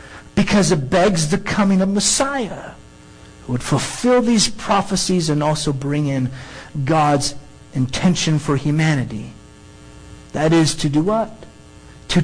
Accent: American